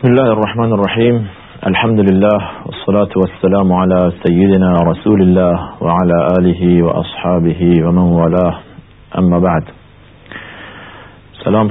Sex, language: male, Persian